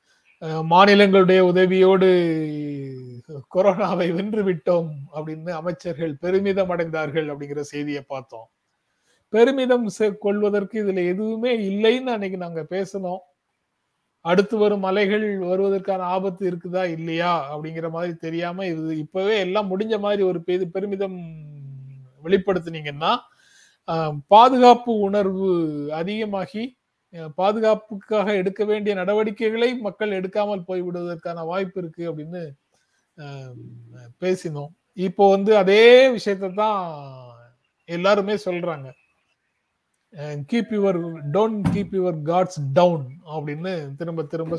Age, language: 30-49, Tamil